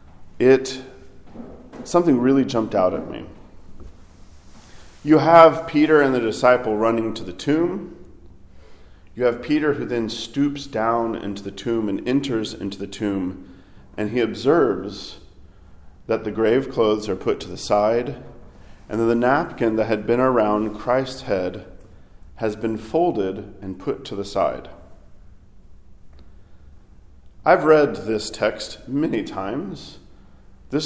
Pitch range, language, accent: 90-135 Hz, English, American